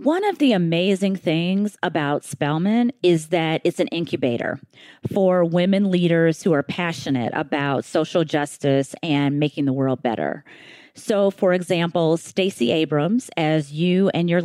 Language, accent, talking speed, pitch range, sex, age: English, American, 145 wpm, 150-205 Hz, female, 30-49